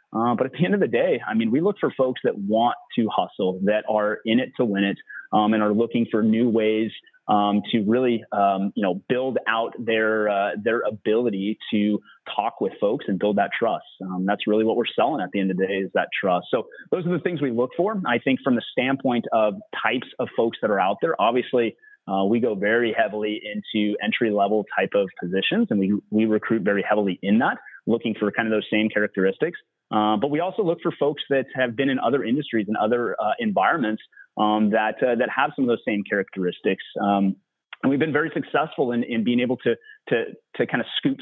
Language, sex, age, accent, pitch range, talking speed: English, male, 30-49, American, 105-120 Hz, 230 wpm